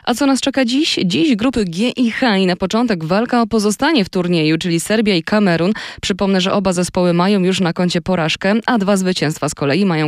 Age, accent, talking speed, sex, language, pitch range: 20-39, native, 220 wpm, female, Polish, 160-210 Hz